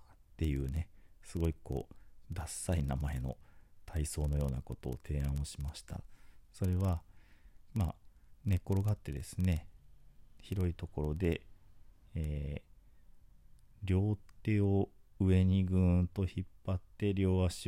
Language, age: Japanese, 40-59